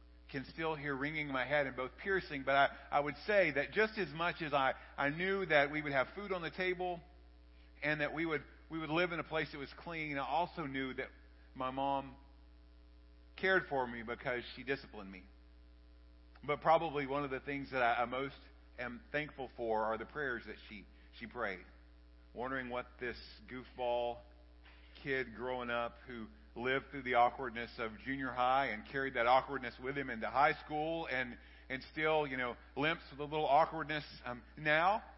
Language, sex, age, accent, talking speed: English, male, 50-69, American, 195 wpm